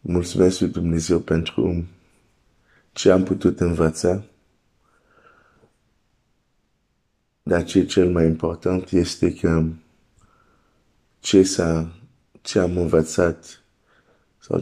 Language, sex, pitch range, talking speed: Romanian, male, 80-95 Hz, 85 wpm